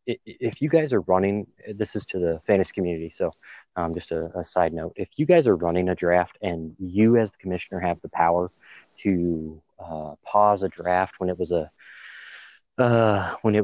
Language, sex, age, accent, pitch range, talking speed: English, male, 30-49, American, 90-105 Hz, 200 wpm